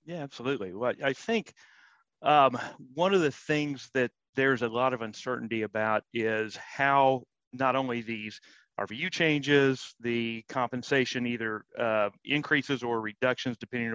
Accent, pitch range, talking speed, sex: American, 115-135 Hz, 140 wpm, male